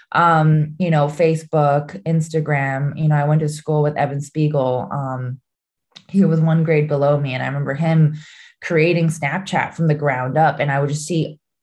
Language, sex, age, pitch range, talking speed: English, female, 20-39, 150-185 Hz, 185 wpm